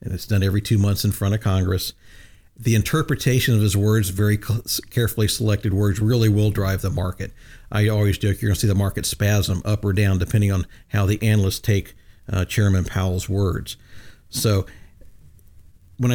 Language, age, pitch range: English, 50-69, 100-120 Hz